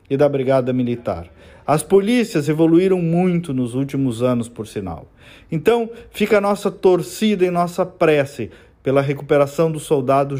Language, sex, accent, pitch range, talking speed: Portuguese, male, Brazilian, 135-185 Hz, 145 wpm